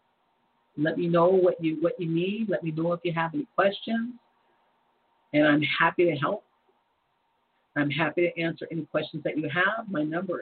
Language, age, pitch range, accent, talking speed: English, 50-69, 150-190 Hz, American, 185 wpm